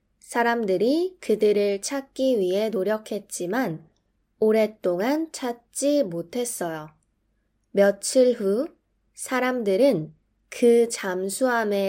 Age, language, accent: 20-39, Korean, native